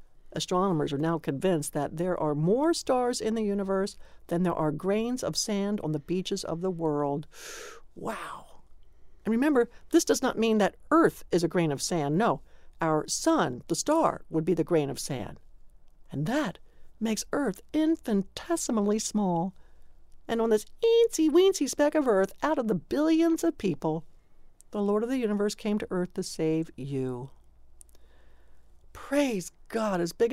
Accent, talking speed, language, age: American, 165 wpm, English, 60-79